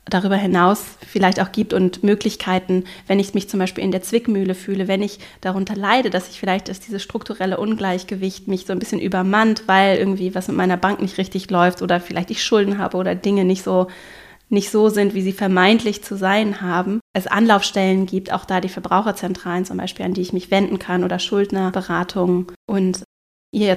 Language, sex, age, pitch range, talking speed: German, female, 20-39, 180-210 Hz, 200 wpm